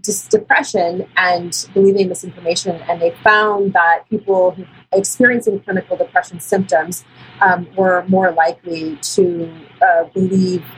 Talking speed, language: 110 wpm, English